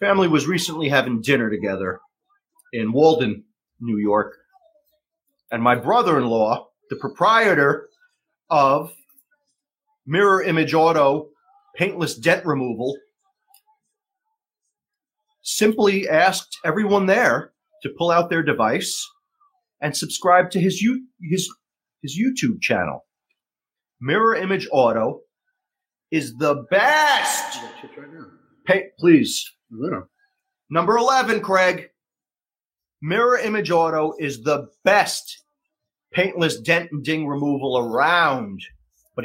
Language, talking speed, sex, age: English, 95 wpm, male, 40-59